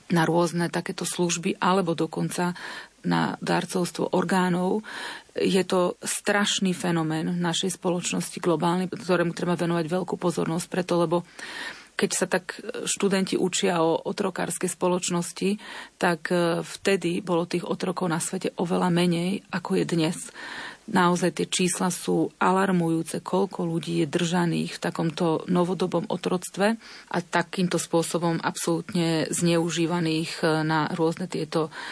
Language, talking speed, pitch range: Slovak, 120 wpm, 170-185 Hz